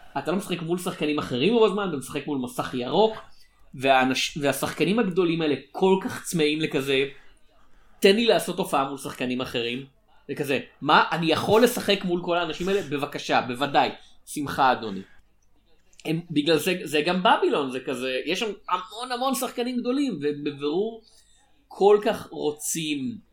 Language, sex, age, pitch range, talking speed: Hebrew, male, 30-49, 145-185 Hz, 145 wpm